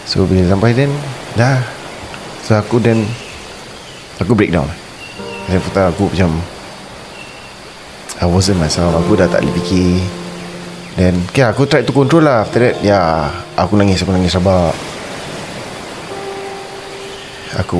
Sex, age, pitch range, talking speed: male, 20-39, 90-110 Hz, 140 wpm